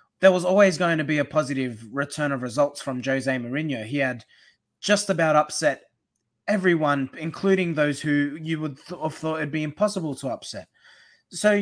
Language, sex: English, male